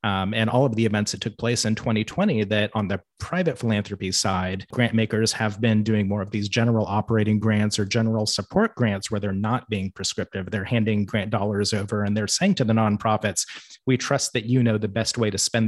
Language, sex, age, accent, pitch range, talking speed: English, male, 30-49, American, 105-120 Hz, 220 wpm